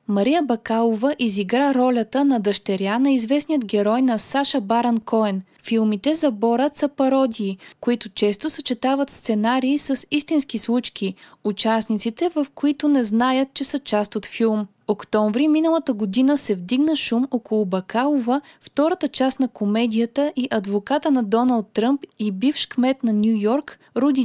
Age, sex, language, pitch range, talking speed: 20-39, female, Bulgarian, 215-280 Hz, 145 wpm